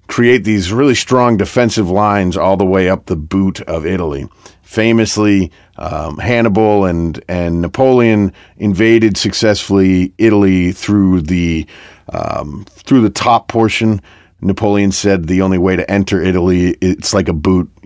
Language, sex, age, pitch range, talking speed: English, male, 40-59, 90-110 Hz, 140 wpm